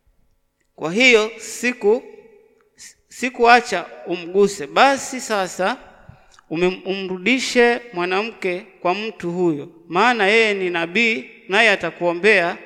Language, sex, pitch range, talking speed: Swahili, male, 175-220 Hz, 90 wpm